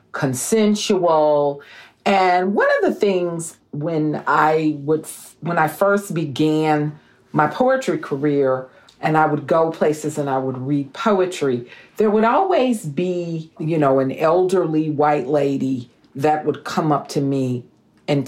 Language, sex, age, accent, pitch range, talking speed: English, female, 40-59, American, 145-185 Hz, 145 wpm